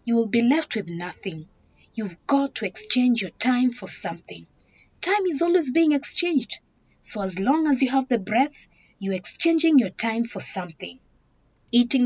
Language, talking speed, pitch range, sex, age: English, 170 wpm, 205-280 Hz, female, 30-49